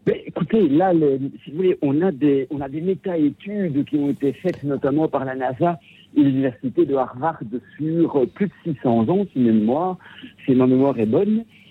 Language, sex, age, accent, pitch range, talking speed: French, male, 60-79, French, 120-180 Hz, 200 wpm